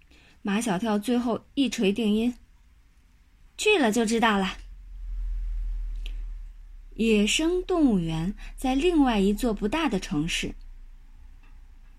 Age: 20-39